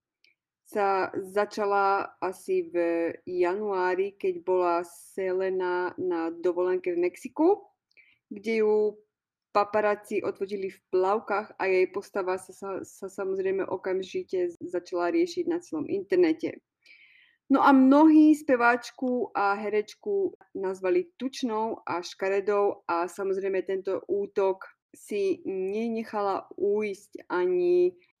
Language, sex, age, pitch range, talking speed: Slovak, female, 20-39, 190-240 Hz, 105 wpm